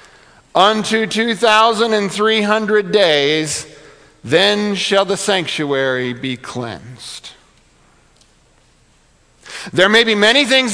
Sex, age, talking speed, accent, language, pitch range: male, 50-69, 80 wpm, American, English, 175-225 Hz